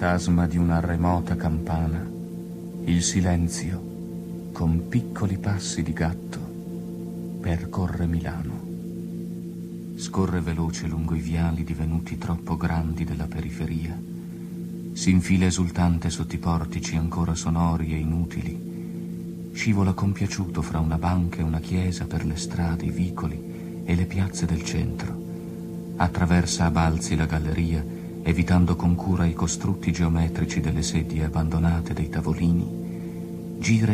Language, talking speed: Italian, 120 wpm